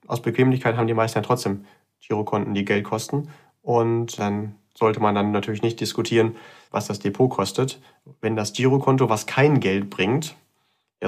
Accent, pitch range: German, 110-145 Hz